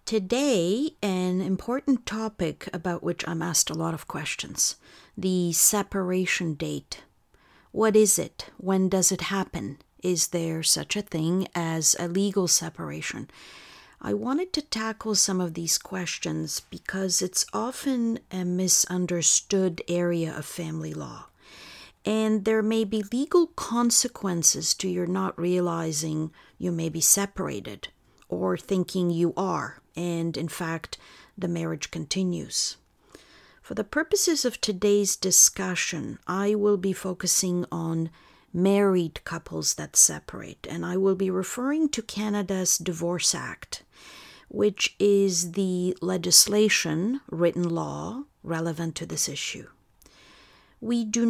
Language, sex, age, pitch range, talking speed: English, female, 50-69, 170-210 Hz, 125 wpm